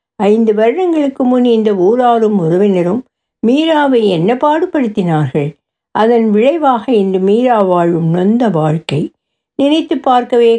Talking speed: 95 wpm